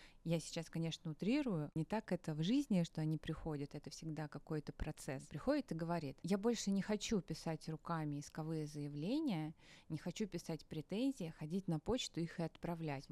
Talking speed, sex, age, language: 170 wpm, female, 20-39, Russian